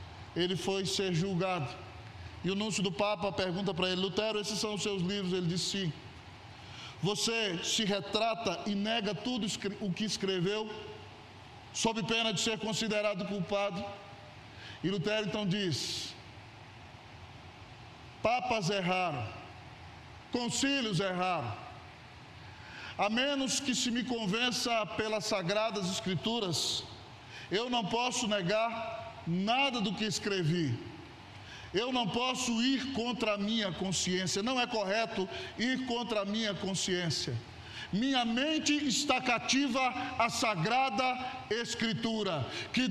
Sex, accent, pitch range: male, Brazilian, 165-225 Hz